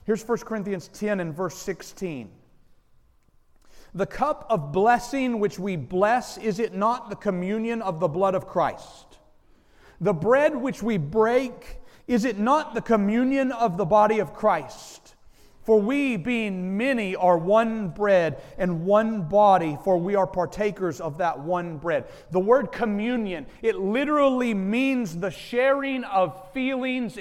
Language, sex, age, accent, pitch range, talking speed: English, male, 40-59, American, 195-260 Hz, 150 wpm